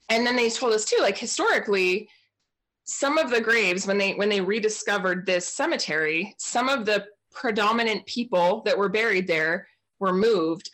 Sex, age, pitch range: female, 20-39, 175-225 Hz